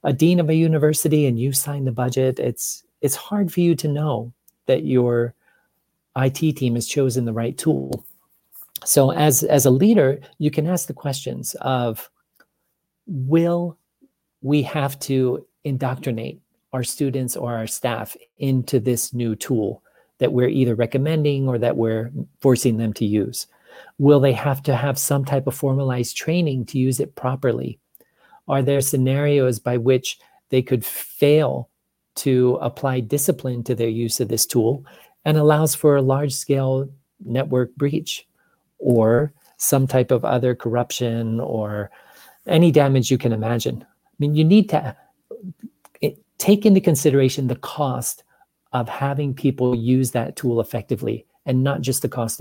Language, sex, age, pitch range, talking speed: English, male, 40-59, 125-150 Hz, 155 wpm